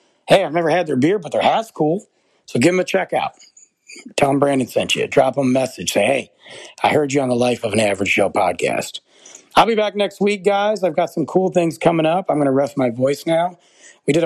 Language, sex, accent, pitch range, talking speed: English, male, American, 135-175 Hz, 255 wpm